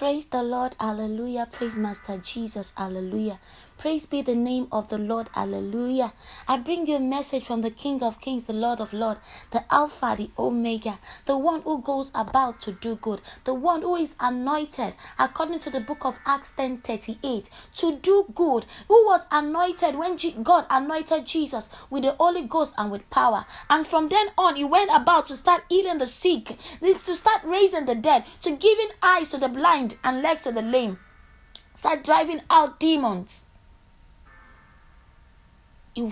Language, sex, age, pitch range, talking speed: English, female, 20-39, 220-330 Hz, 175 wpm